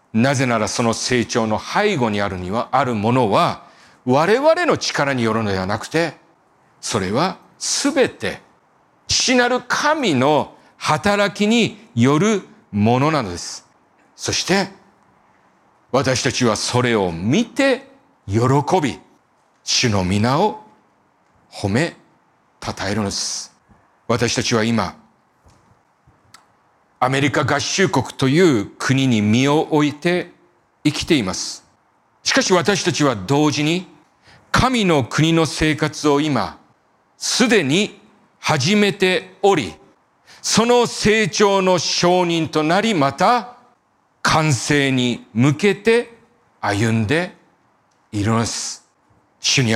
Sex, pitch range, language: male, 115-185 Hz, Japanese